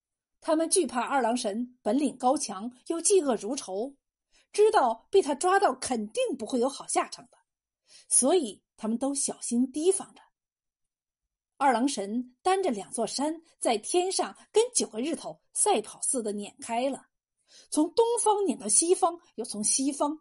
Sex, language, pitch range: female, Chinese, 245-365 Hz